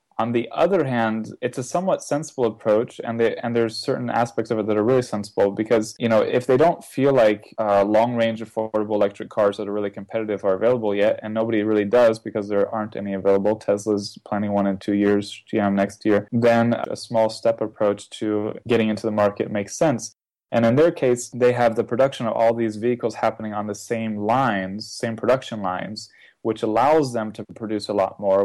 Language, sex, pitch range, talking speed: English, male, 105-120 Hz, 210 wpm